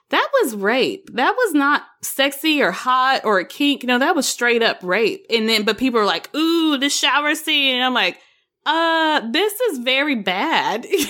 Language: English